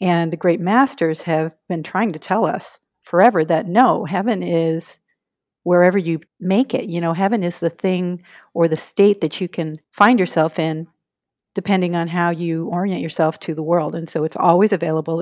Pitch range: 170-195 Hz